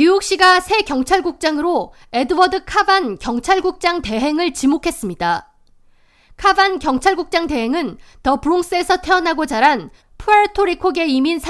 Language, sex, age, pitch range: Korean, female, 20-39, 270-370 Hz